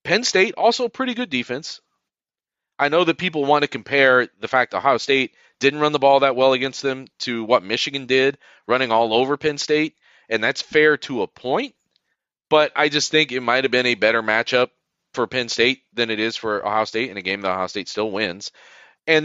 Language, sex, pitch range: English, male, 110-150 Hz